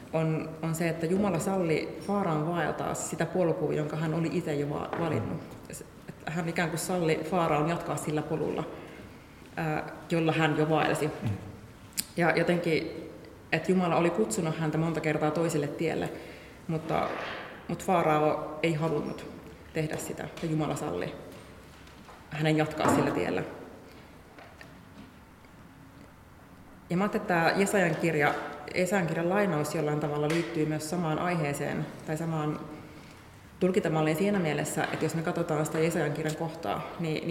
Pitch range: 150-170 Hz